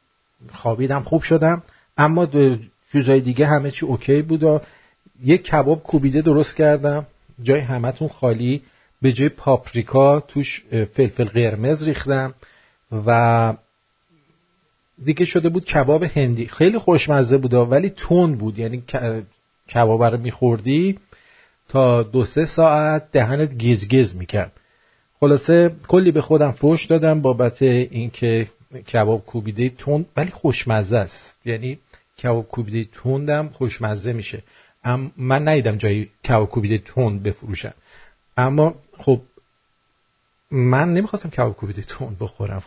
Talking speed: 120 wpm